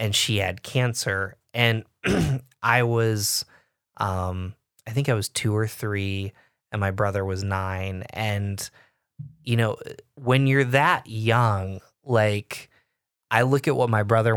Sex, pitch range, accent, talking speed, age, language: male, 105-130 Hz, American, 140 wpm, 20-39, English